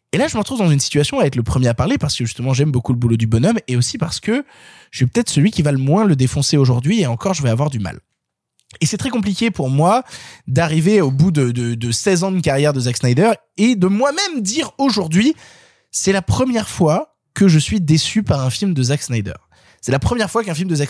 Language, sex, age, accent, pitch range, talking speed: French, male, 20-39, French, 150-220 Hz, 260 wpm